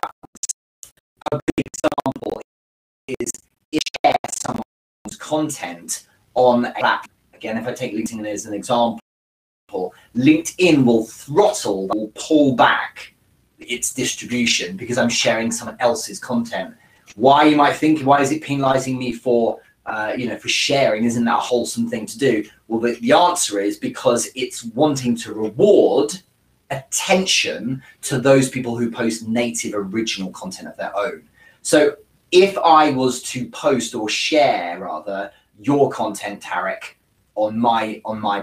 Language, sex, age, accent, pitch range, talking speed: English, male, 20-39, British, 110-140 Hz, 140 wpm